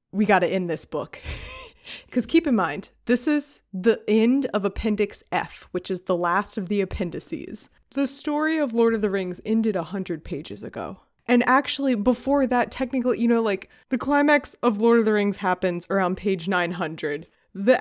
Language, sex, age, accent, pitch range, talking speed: English, female, 20-39, American, 190-245 Hz, 185 wpm